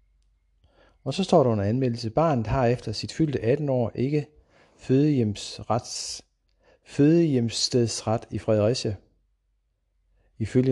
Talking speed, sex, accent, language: 105 wpm, male, native, Danish